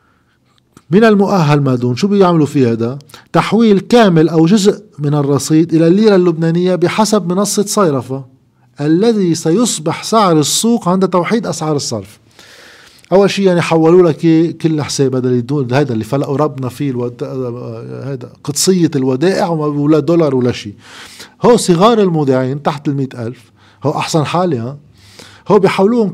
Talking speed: 140 wpm